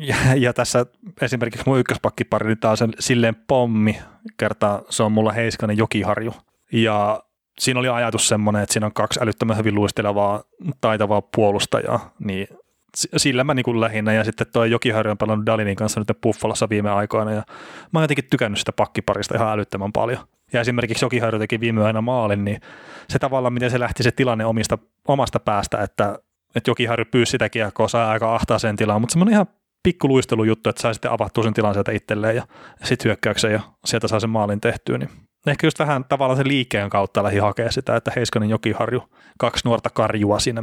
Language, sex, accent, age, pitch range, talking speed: Finnish, male, native, 30-49, 110-125 Hz, 185 wpm